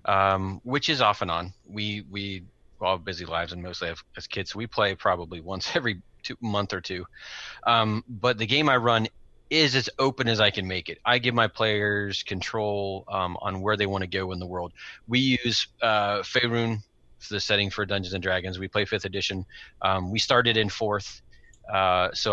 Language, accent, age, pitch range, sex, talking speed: English, American, 30-49, 95-115 Hz, male, 195 wpm